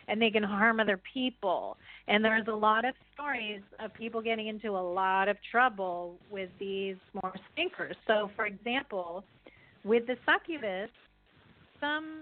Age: 40-59